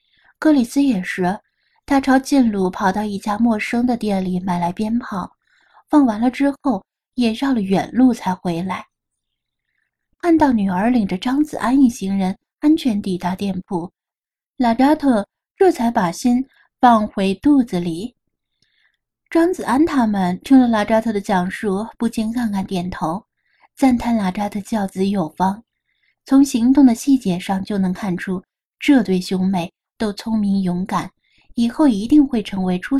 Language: Chinese